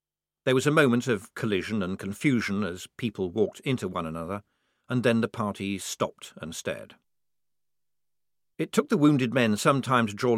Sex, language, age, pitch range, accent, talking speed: male, English, 50-69, 95-130 Hz, British, 175 wpm